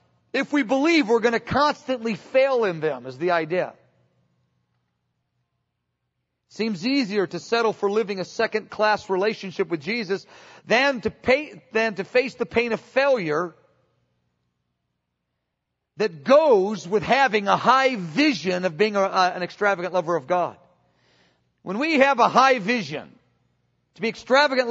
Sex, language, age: male, English, 40-59